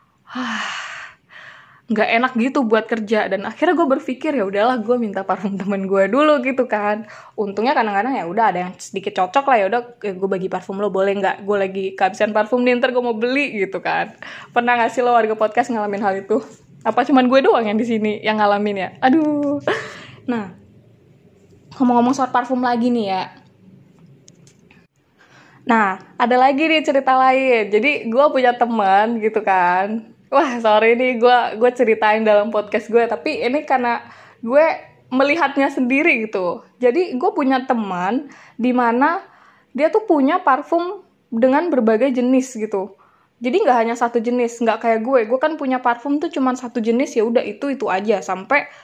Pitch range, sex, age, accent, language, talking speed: 210-265 Hz, female, 20-39, Indonesian, English, 165 wpm